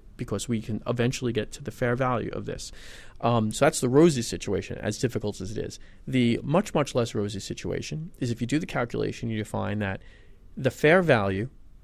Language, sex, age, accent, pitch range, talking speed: English, male, 30-49, American, 105-130 Hz, 205 wpm